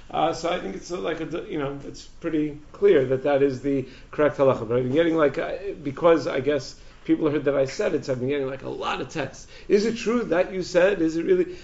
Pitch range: 140-175 Hz